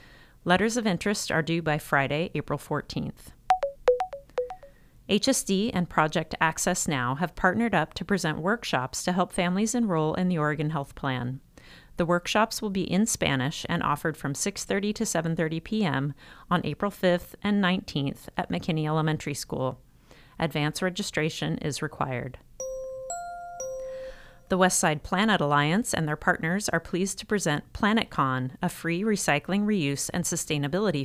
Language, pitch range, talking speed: English, 145-200 Hz, 140 wpm